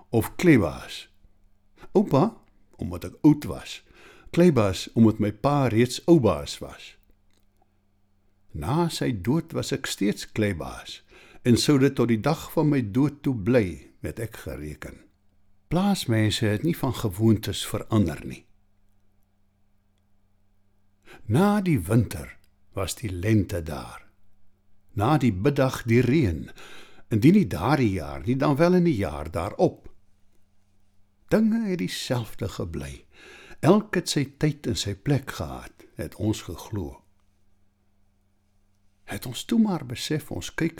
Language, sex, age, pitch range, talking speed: English, male, 60-79, 95-135 Hz, 130 wpm